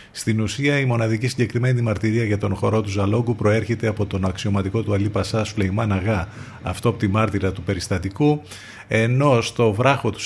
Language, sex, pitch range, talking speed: Greek, male, 95-120 Hz, 160 wpm